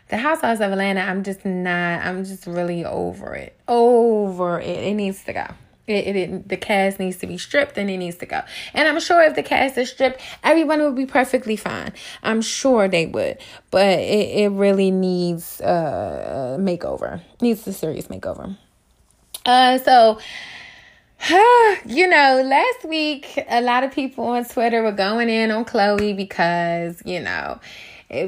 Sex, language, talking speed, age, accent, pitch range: female, English, 175 wpm, 20-39, American, 190-255 Hz